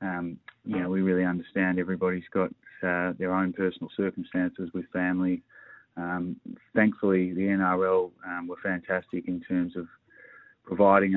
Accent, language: Australian, English